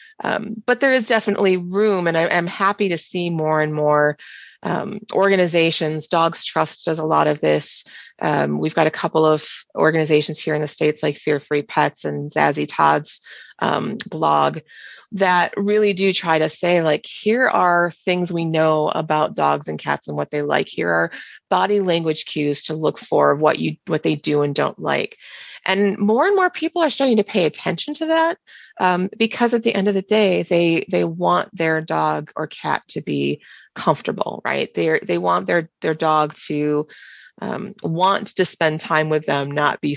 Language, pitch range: English, 150-200 Hz